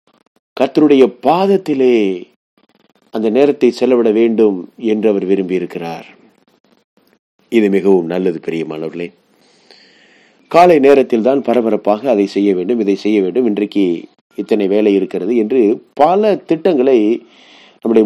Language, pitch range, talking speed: Tamil, 105-175 Hz, 105 wpm